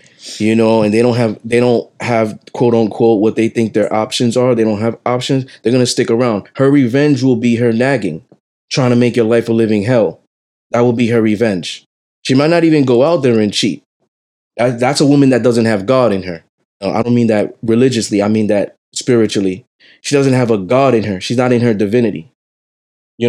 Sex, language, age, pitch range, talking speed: male, English, 20-39, 110-130 Hz, 220 wpm